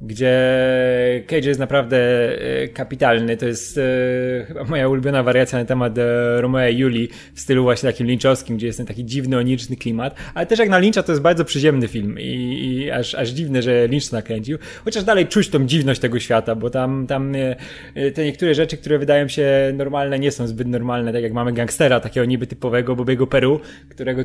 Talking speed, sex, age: 200 wpm, male, 20-39